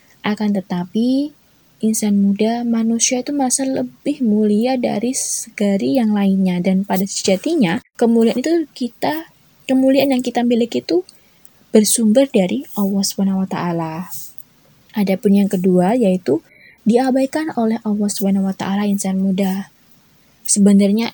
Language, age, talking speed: Indonesian, 20-39, 120 wpm